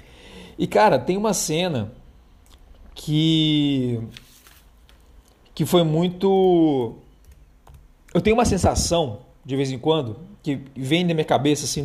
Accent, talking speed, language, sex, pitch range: Brazilian, 115 wpm, Portuguese, male, 130-170 Hz